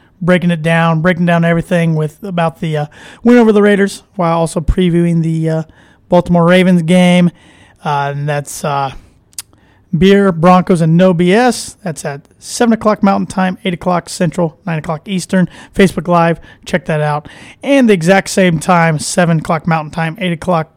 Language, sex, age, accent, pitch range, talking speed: English, male, 30-49, American, 160-195 Hz, 170 wpm